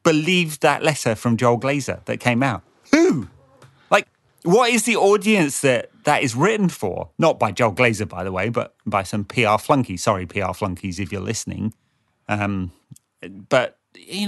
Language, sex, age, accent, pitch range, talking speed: English, male, 30-49, British, 115-160 Hz, 170 wpm